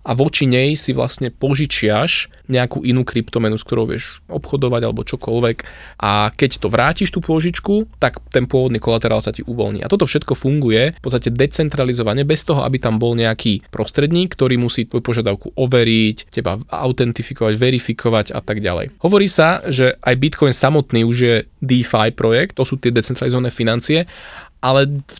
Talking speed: 165 wpm